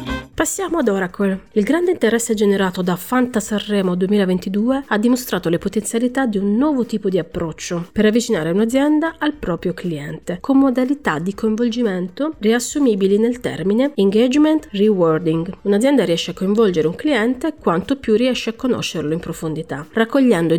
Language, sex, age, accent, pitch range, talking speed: Italian, female, 30-49, native, 175-250 Hz, 145 wpm